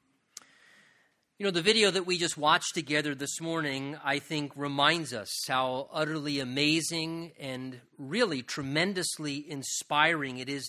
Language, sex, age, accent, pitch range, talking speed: English, male, 40-59, American, 140-175 Hz, 135 wpm